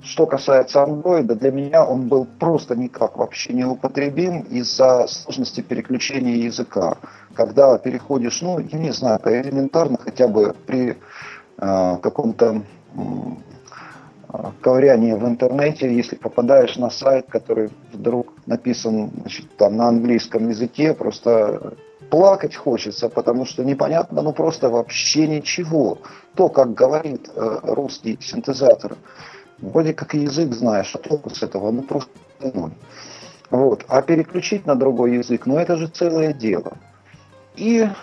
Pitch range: 120-155 Hz